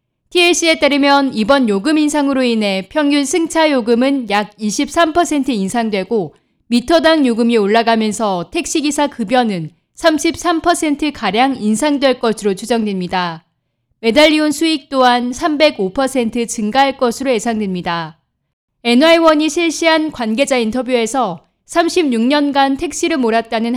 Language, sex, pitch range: Korean, female, 220-295 Hz